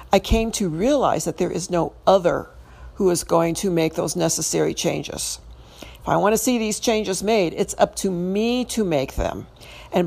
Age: 60-79